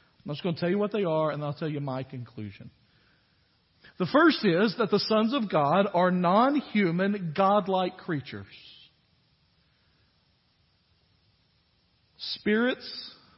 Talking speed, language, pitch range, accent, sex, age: 130 wpm, English, 145-220 Hz, American, male, 50-69